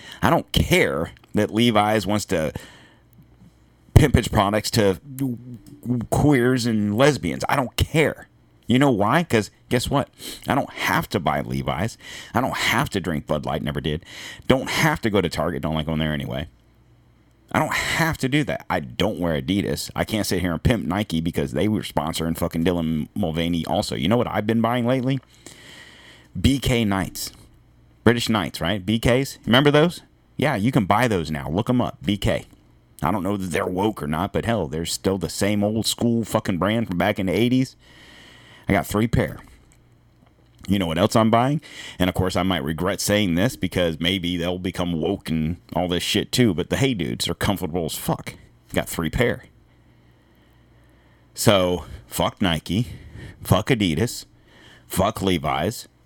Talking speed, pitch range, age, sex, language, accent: 180 wpm, 80-115 Hz, 40-59, male, English, American